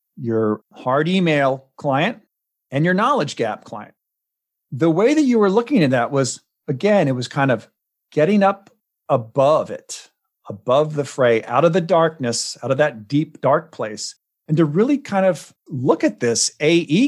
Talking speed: 170 wpm